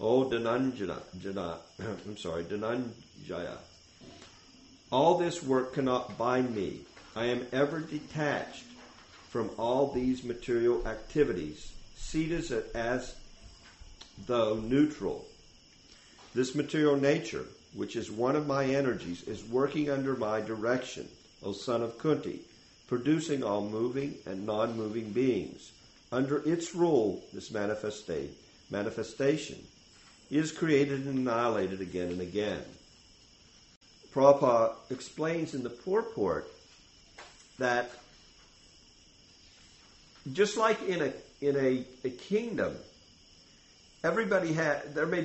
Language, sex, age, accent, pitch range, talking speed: English, male, 50-69, American, 110-155 Hz, 105 wpm